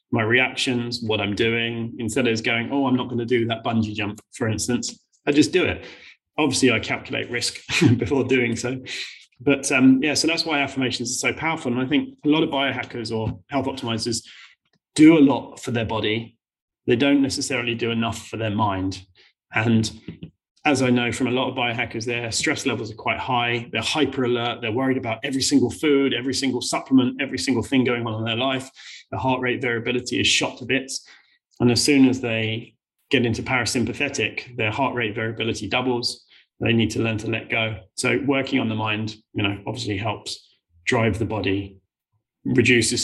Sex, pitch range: male, 115-130 Hz